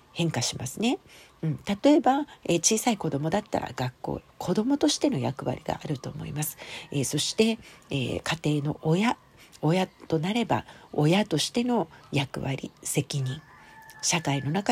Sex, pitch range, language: female, 145-225 Hz, Japanese